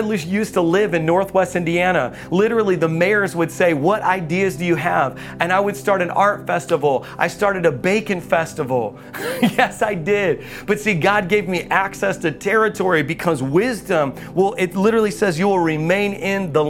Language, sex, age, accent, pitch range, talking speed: English, male, 40-59, American, 185-235 Hz, 185 wpm